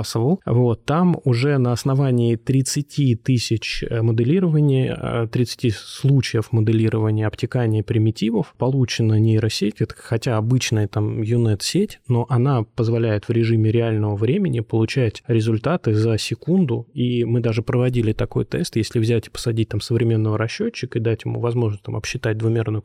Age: 20-39